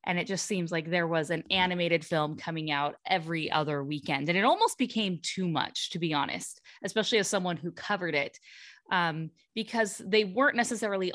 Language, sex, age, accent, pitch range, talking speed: English, female, 20-39, American, 170-230 Hz, 190 wpm